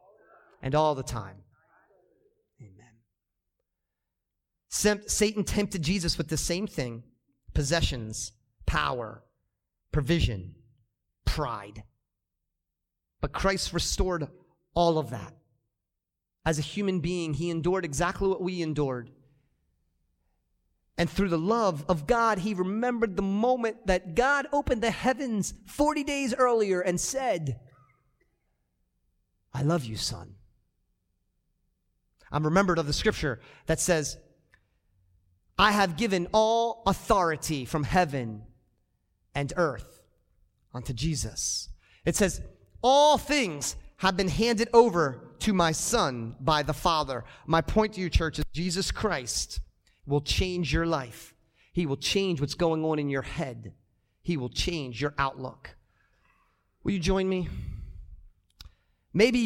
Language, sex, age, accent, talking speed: English, male, 40-59, American, 120 wpm